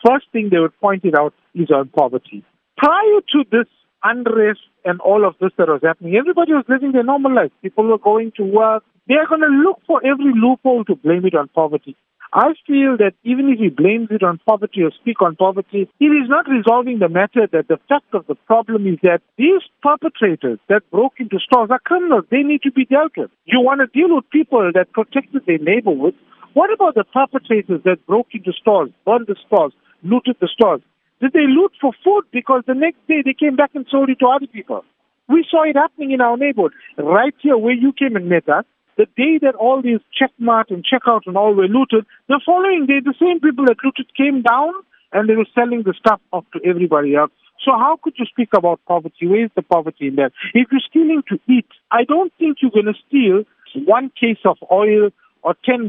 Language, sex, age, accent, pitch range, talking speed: English, male, 50-69, Indian, 195-275 Hz, 220 wpm